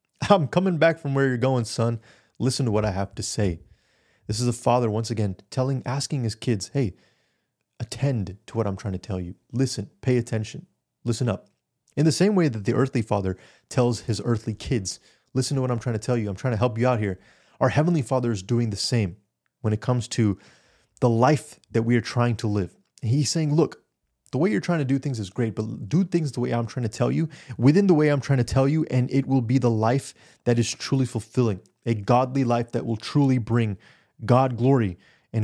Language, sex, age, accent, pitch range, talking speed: English, male, 30-49, American, 110-135 Hz, 230 wpm